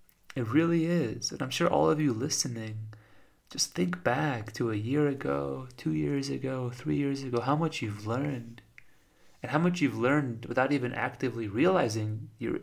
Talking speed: 175 wpm